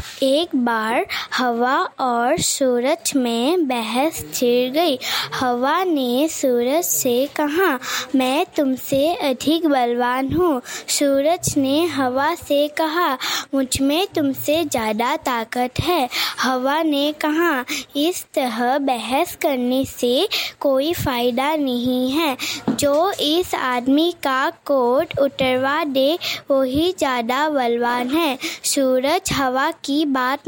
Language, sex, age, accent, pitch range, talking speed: English, female, 20-39, Indian, 255-325 Hz, 110 wpm